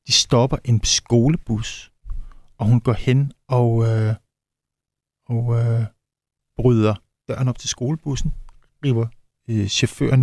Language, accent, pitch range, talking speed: Danish, native, 110-130 Hz, 110 wpm